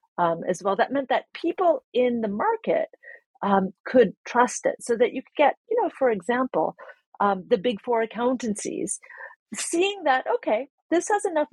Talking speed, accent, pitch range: 175 wpm, American, 195-265 Hz